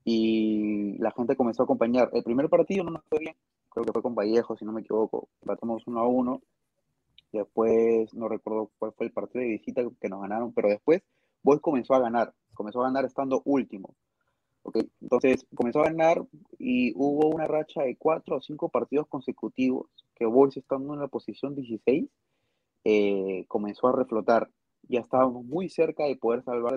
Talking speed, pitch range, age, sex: 185 wpm, 110-140 Hz, 20-39, male